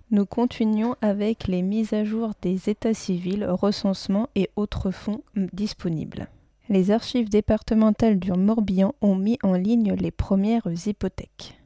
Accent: French